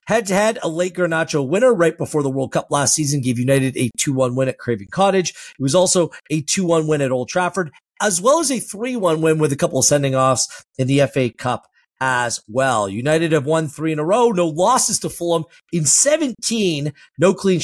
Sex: male